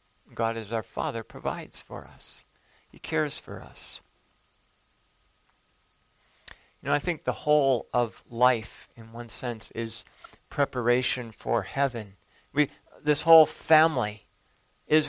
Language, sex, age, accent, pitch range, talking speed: English, male, 50-69, American, 115-150 Hz, 125 wpm